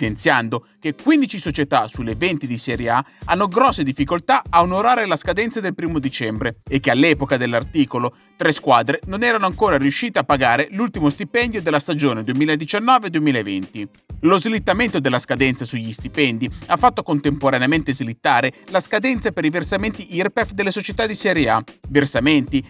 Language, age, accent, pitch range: Italian, 30-49, native, 130-205 Hz